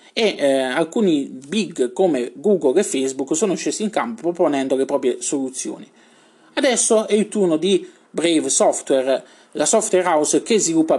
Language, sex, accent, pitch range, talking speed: Italian, male, native, 145-215 Hz, 155 wpm